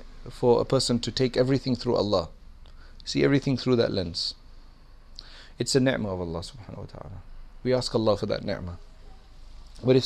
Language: English